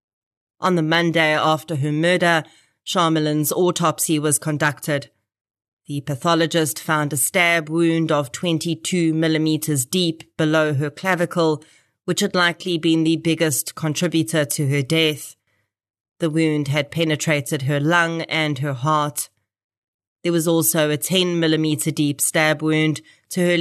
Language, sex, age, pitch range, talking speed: English, female, 30-49, 150-165 Hz, 135 wpm